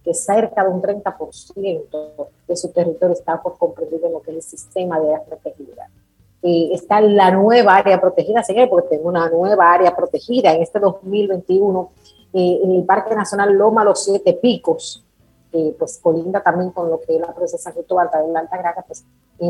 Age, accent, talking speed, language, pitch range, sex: 30-49, American, 190 wpm, Spanish, 165-200 Hz, female